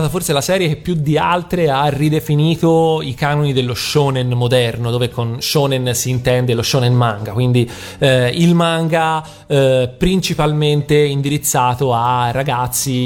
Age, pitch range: 30-49, 125-155 Hz